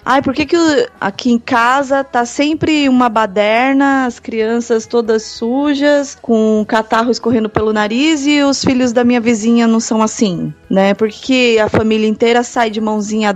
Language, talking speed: Portuguese, 165 wpm